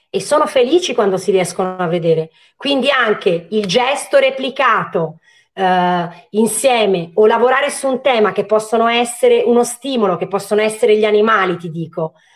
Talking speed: 150 wpm